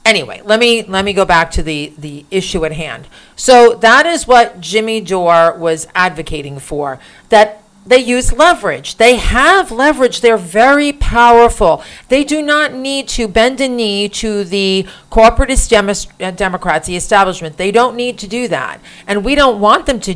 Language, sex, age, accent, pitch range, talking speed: English, female, 40-59, American, 175-245 Hz, 175 wpm